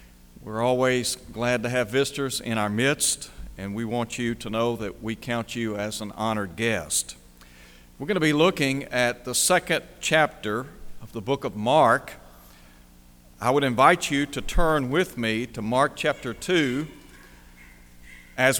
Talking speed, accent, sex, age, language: 160 wpm, American, male, 60-79, English